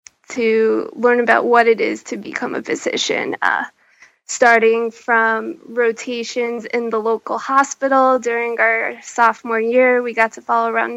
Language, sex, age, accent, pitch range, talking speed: English, female, 20-39, American, 230-260 Hz, 150 wpm